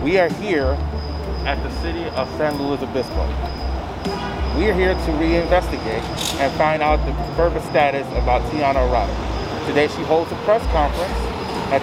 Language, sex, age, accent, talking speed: English, male, 30-49, American, 155 wpm